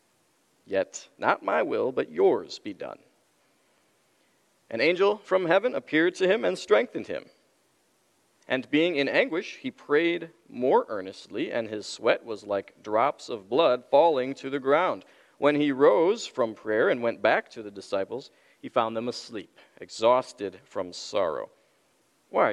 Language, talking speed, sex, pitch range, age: English, 150 wpm, male, 115-185 Hz, 40-59